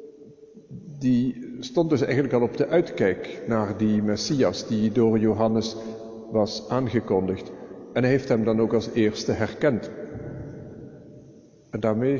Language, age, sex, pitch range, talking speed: Dutch, 50-69, male, 110-135 Hz, 135 wpm